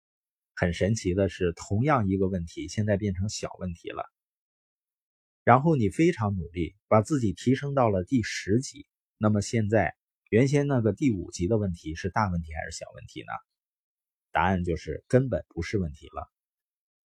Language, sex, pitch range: Chinese, male, 90-120 Hz